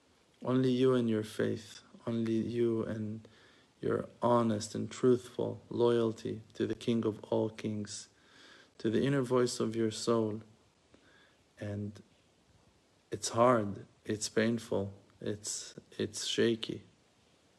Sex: male